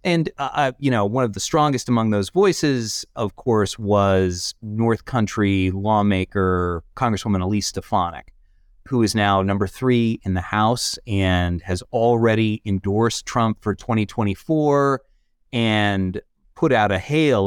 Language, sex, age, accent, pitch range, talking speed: English, male, 30-49, American, 95-115 Hz, 135 wpm